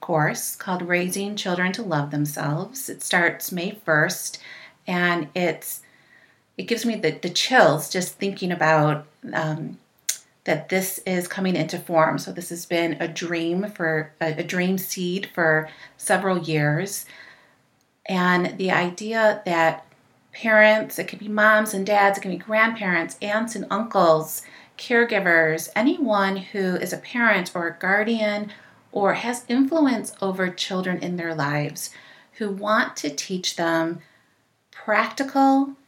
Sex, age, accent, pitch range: female, 30-49, American, 165-205 Hz